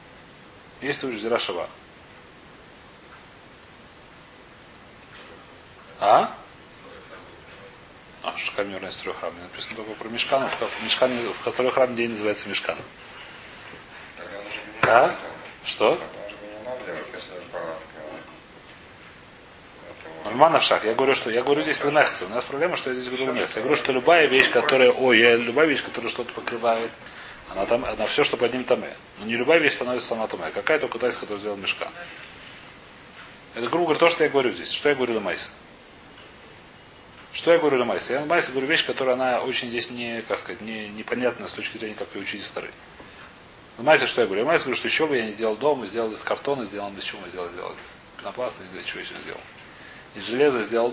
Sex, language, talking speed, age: male, Russian, 165 wpm, 30-49